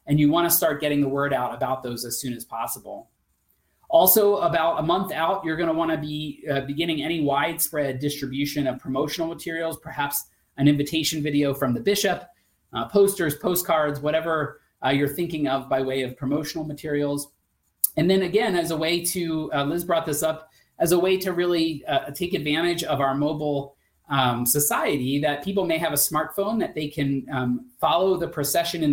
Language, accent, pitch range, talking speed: English, American, 135-165 Hz, 185 wpm